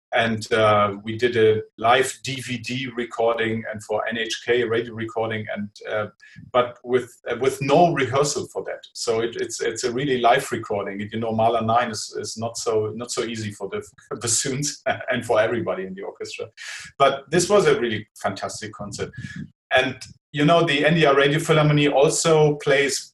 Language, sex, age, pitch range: English, male, 40-59, 110-145 Hz